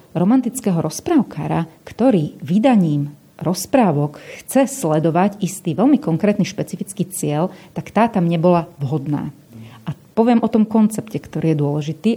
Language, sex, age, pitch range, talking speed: Slovak, female, 40-59, 160-195 Hz, 125 wpm